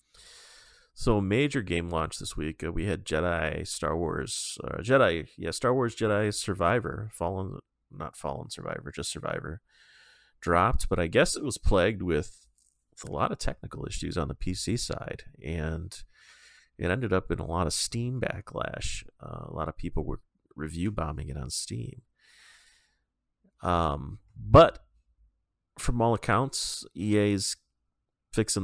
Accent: American